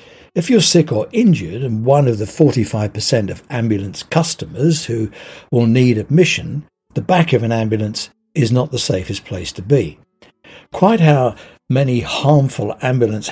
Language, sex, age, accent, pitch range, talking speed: English, male, 60-79, British, 110-150 Hz, 155 wpm